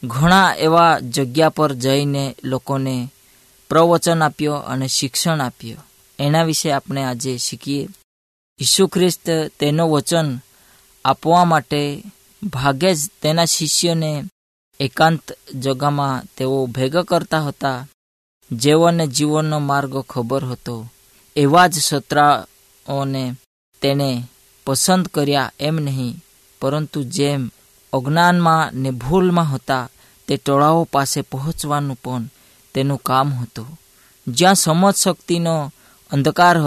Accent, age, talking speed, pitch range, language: native, 20-39, 75 wpm, 130-160 Hz, Hindi